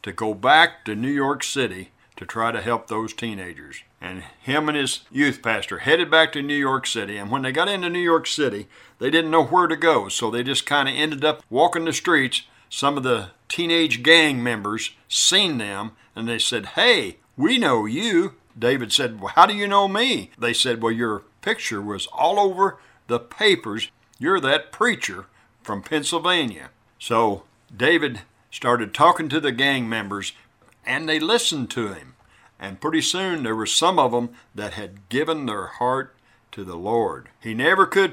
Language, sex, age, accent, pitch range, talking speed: English, male, 60-79, American, 110-150 Hz, 185 wpm